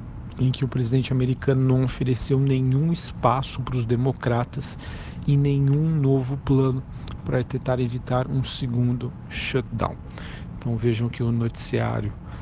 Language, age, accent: Portuguese, 40-59, Brazilian